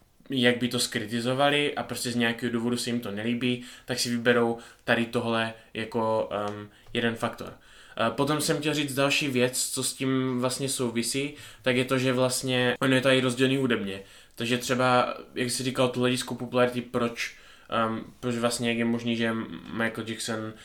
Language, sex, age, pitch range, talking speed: Czech, male, 20-39, 110-125 Hz, 180 wpm